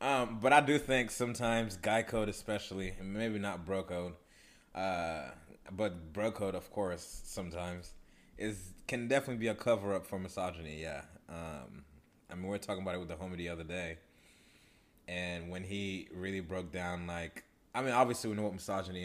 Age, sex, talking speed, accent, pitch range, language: 20-39, male, 180 wpm, American, 90-115 Hz, English